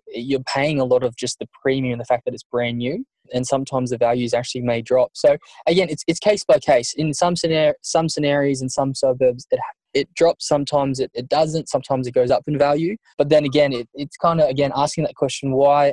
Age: 10-29